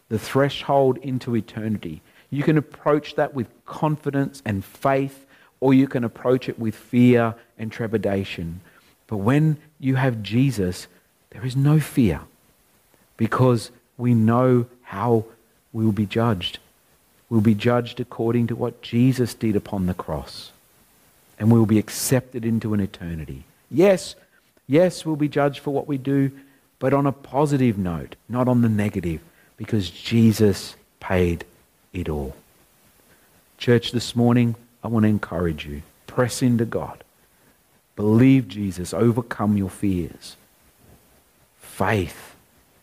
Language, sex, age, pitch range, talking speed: English, male, 50-69, 105-135 Hz, 135 wpm